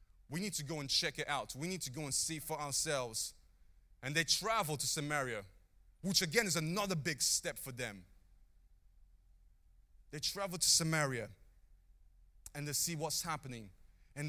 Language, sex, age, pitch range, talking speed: English, male, 20-39, 90-150 Hz, 165 wpm